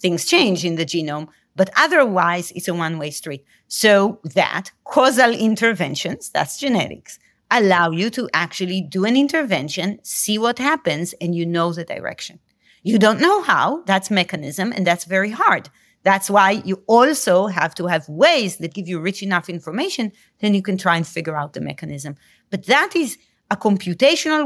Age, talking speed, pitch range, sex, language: 40-59, 170 wpm, 175-235 Hz, female, English